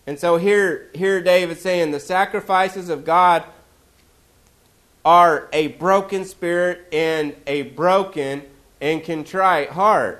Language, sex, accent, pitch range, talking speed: English, male, American, 175-215 Hz, 120 wpm